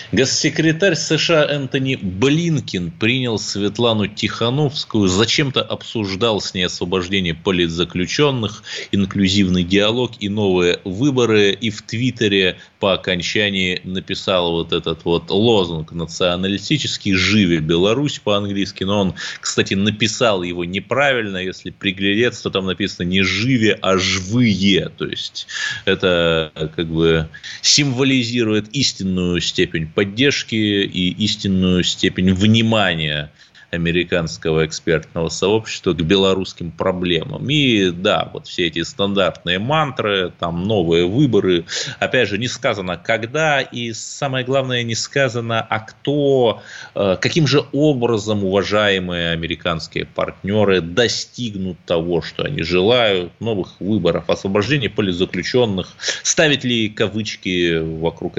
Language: Russian